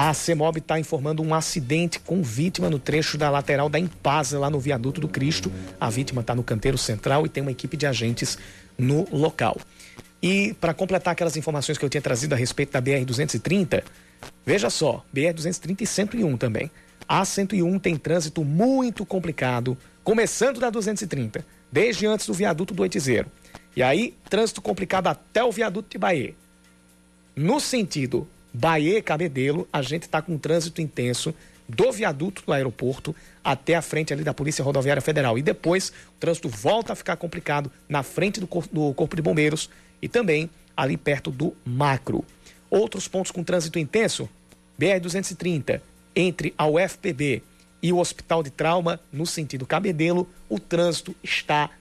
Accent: Brazilian